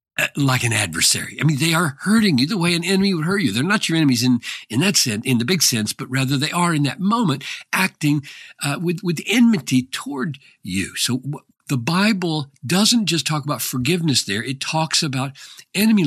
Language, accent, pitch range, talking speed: English, American, 125-180 Hz, 205 wpm